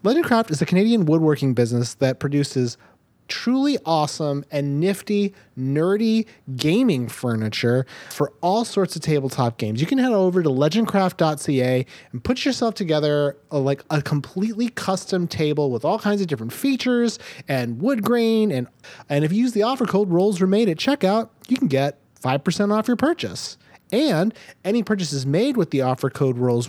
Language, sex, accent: English, male, American